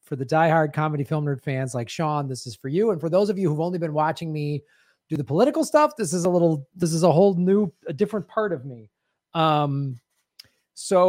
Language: English